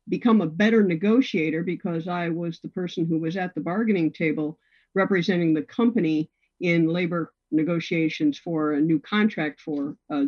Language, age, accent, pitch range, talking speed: English, 50-69, American, 155-220 Hz, 160 wpm